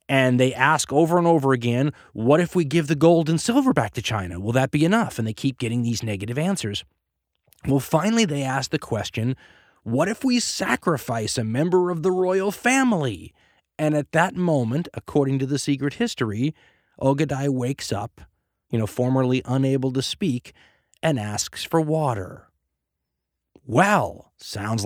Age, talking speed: 30-49, 165 wpm